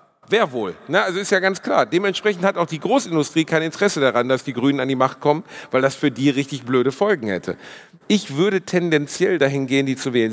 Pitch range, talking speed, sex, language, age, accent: 135-185 Hz, 225 wpm, male, German, 40-59, German